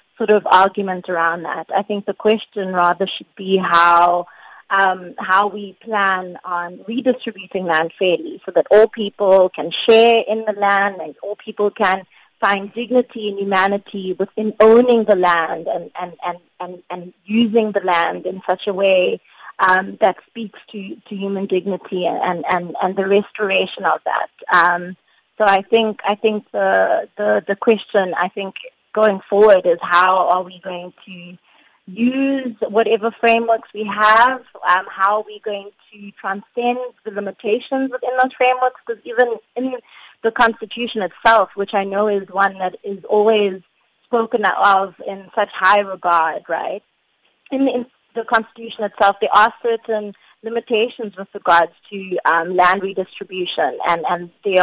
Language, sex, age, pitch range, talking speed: English, female, 20-39, 185-225 Hz, 160 wpm